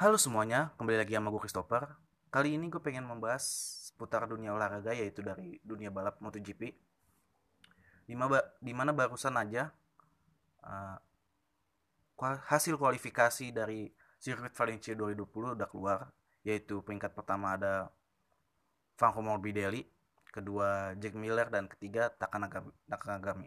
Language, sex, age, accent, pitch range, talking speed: Indonesian, male, 20-39, native, 100-135 Hz, 115 wpm